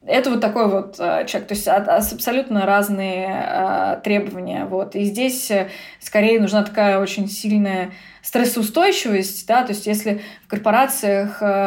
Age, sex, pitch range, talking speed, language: 20-39, female, 195-235 Hz, 130 wpm, Russian